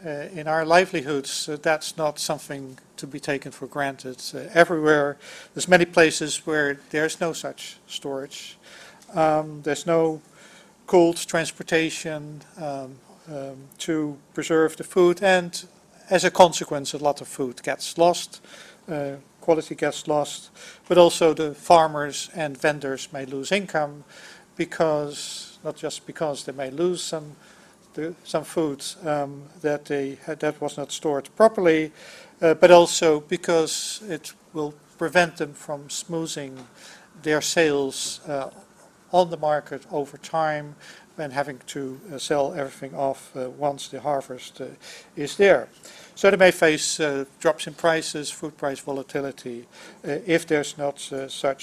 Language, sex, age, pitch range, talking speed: English, male, 50-69, 145-175 Hz, 145 wpm